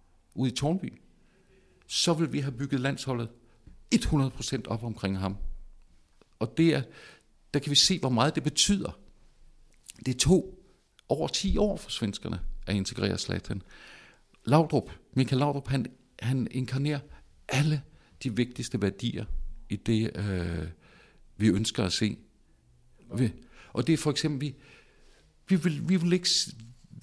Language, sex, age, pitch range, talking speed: Danish, male, 60-79, 105-150 Hz, 140 wpm